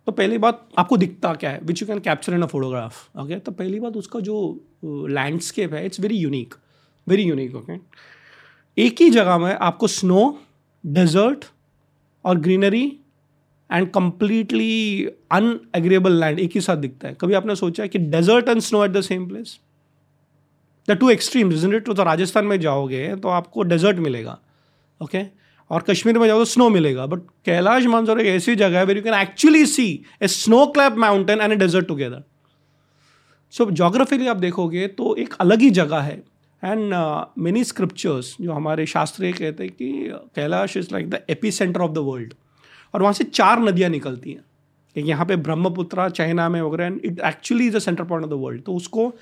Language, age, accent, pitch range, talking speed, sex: Hindi, 30-49, native, 155-210 Hz, 190 wpm, male